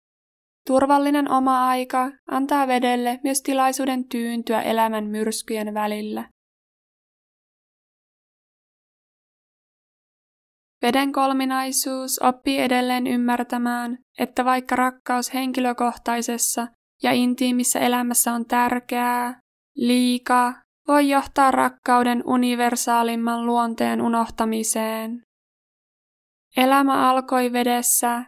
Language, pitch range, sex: Finnish, 235-255 Hz, female